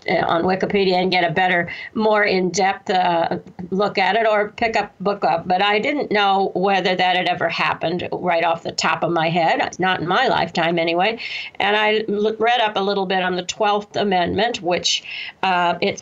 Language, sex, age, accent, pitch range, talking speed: English, female, 50-69, American, 175-210 Hz, 200 wpm